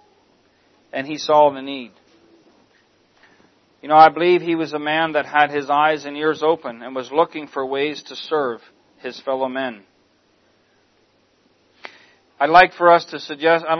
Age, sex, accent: 40-59, male, American